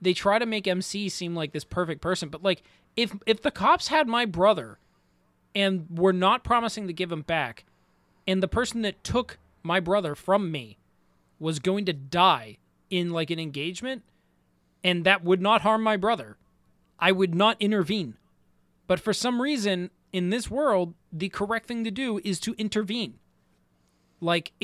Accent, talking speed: American, 175 wpm